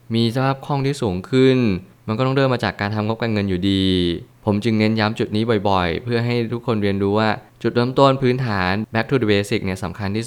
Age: 20-39